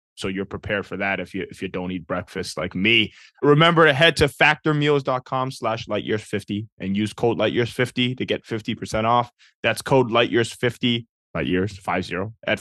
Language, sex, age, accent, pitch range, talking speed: English, male, 20-39, American, 105-135 Hz, 160 wpm